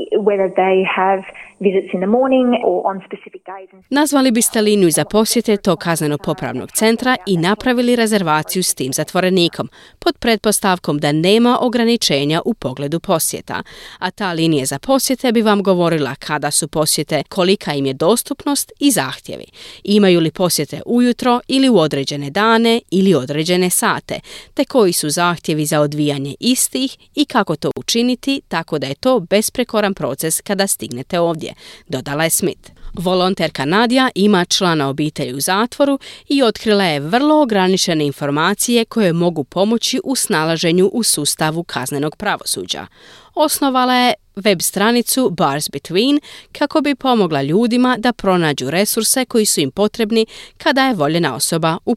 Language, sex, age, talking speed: Croatian, female, 30-49, 135 wpm